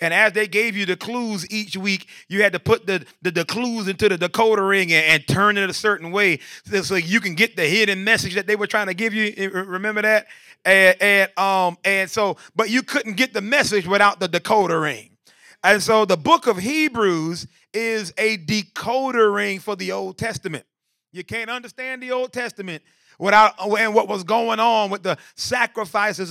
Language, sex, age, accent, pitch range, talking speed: English, male, 30-49, American, 190-230 Hz, 205 wpm